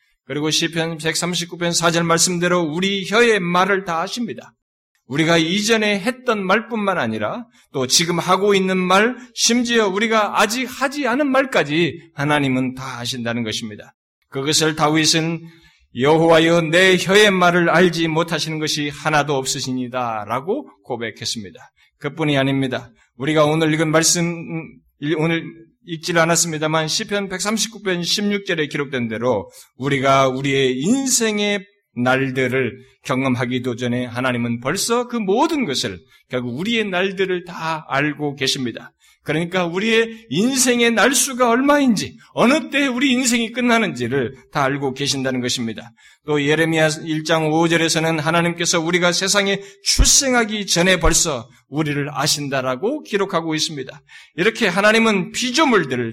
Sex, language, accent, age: male, Korean, native, 20-39